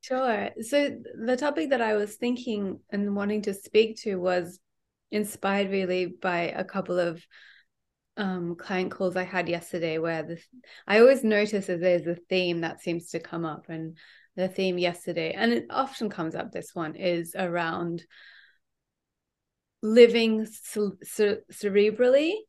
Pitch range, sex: 185-225 Hz, female